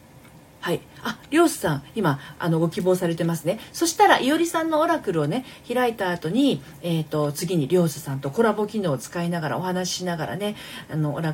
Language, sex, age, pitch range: Japanese, female, 40-59, 155-260 Hz